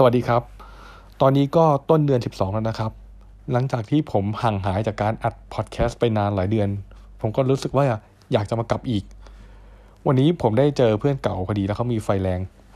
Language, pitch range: Thai, 100-125 Hz